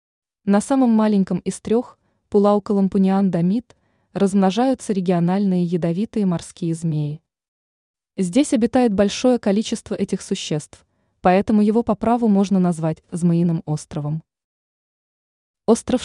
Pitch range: 170-215 Hz